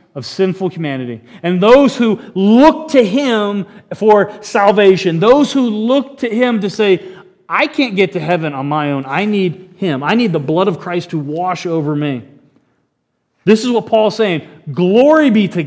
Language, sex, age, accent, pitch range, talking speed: English, male, 40-59, American, 170-220 Hz, 180 wpm